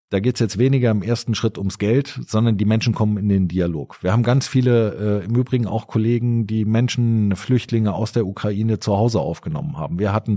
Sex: male